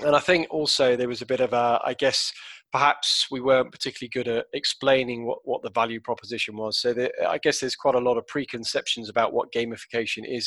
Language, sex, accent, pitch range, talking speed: English, male, British, 120-155 Hz, 235 wpm